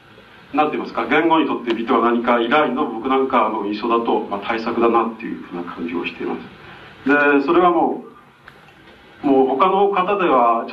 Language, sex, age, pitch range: Japanese, male, 40-59, 115-150 Hz